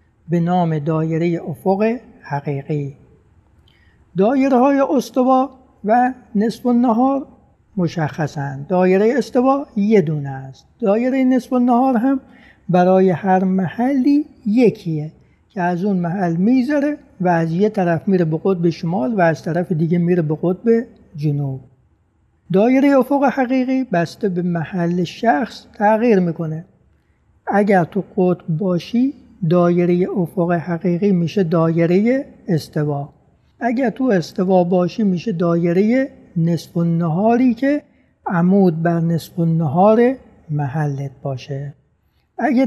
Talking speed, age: 120 wpm, 60-79